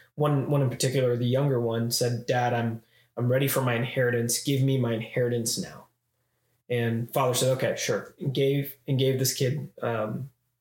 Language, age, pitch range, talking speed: English, 20-39, 115-135 Hz, 180 wpm